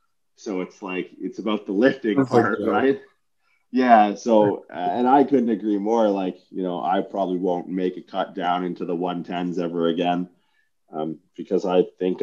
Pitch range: 90-110 Hz